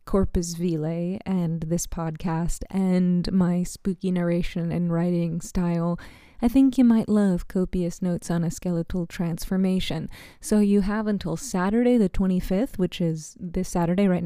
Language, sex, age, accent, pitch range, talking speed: English, female, 20-39, American, 170-195 Hz, 145 wpm